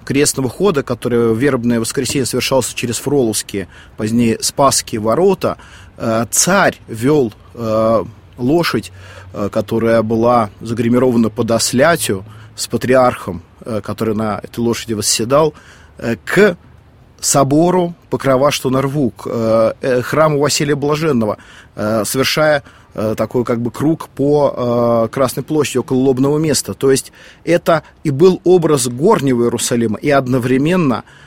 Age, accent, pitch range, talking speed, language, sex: 30-49, native, 115-140 Hz, 110 wpm, Russian, male